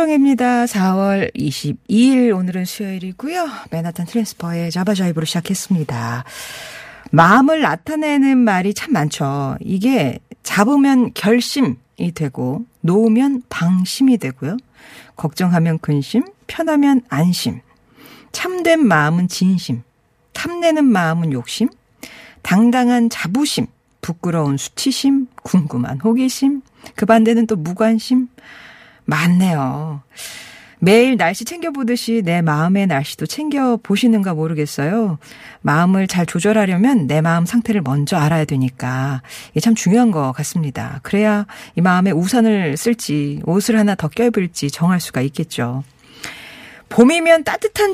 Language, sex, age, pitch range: Korean, female, 40-59, 160-235 Hz